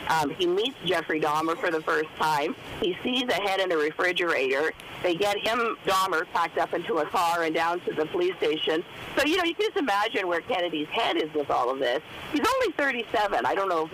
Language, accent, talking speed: English, American, 230 wpm